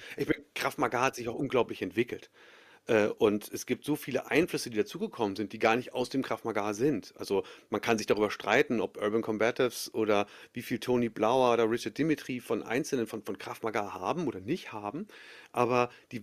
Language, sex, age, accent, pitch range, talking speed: German, male, 40-59, German, 115-155 Hz, 205 wpm